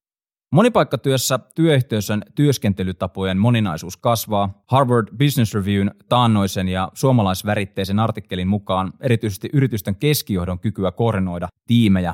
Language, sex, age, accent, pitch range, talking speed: Finnish, male, 20-39, native, 100-130 Hz, 95 wpm